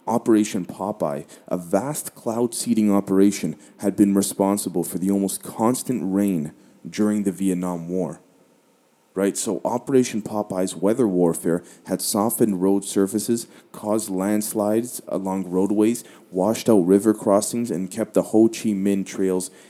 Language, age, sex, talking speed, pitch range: English, 30-49, male, 135 wpm, 90-110 Hz